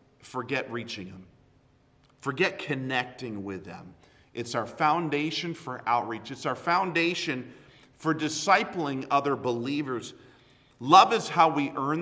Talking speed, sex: 120 wpm, male